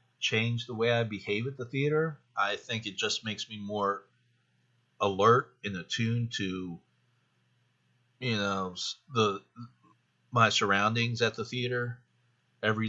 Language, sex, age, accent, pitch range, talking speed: English, male, 40-59, American, 105-125 Hz, 130 wpm